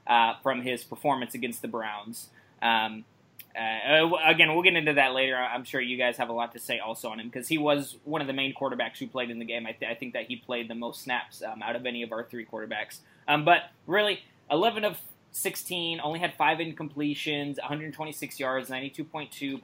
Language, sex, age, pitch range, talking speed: English, male, 20-39, 120-150 Hz, 215 wpm